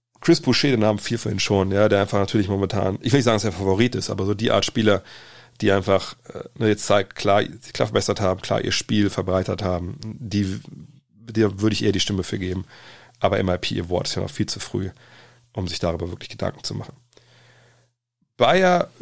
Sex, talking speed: male, 205 wpm